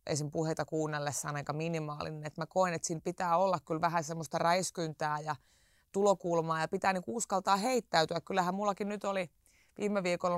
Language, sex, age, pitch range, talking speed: Finnish, female, 20-39, 160-195 Hz, 170 wpm